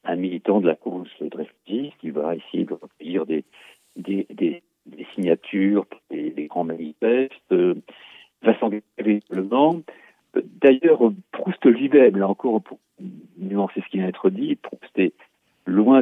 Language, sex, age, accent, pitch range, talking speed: French, male, 50-69, French, 95-150 Hz, 155 wpm